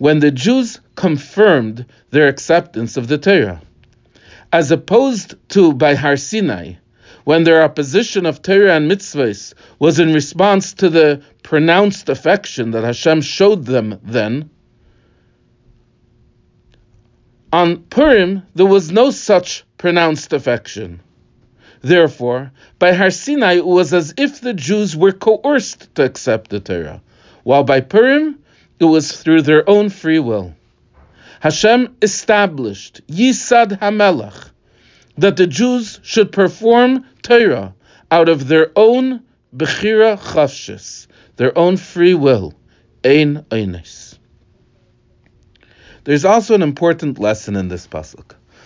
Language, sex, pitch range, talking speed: English, male, 130-200 Hz, 120 wpm